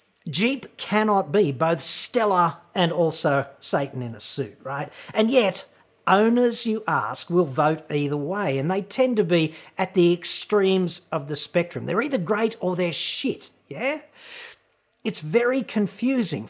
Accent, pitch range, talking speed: Australian, 140-190 Hz, 155 wpm